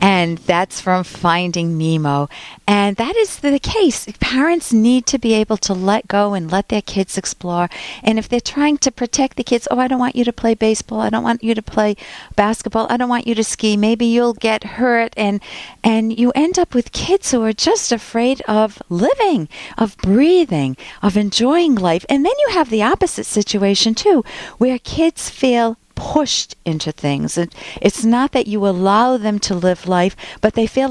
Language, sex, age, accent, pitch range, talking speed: English, female, 50-69, American, 195-255 Hz, 195 wpm